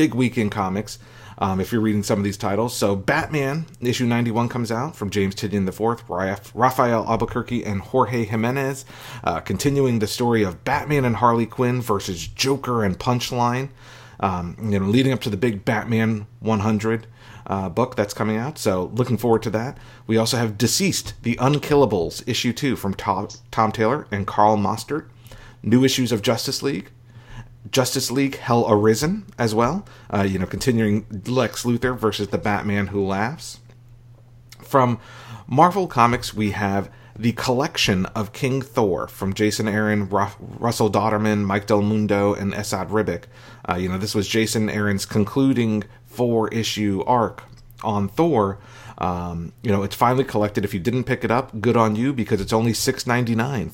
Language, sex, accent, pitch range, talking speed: English, male, American, 105-125 Hz, 170 wpm